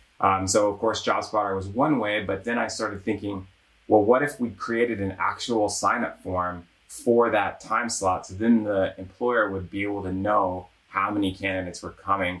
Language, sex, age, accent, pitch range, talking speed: English, male, 20-39, American, 95-110 Hz, 195 wpm